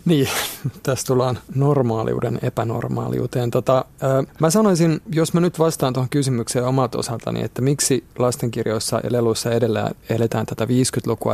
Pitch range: 115-135 Hz